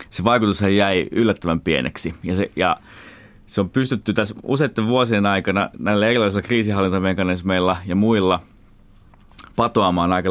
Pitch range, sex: 90-105 Hz, male